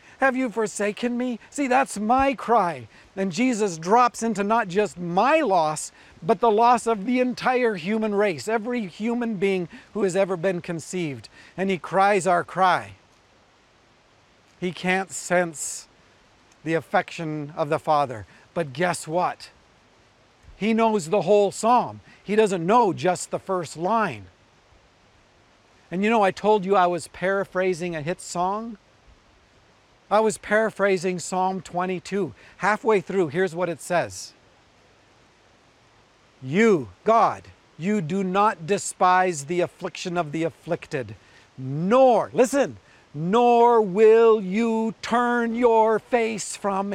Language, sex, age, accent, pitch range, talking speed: English, male, 50-69, American, 170-220 Hz, 130 wpm